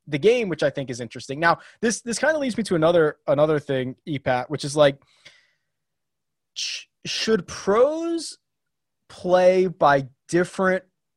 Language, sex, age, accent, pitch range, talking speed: English, male, 20-39, American, 140-195 Hz, 145 wpm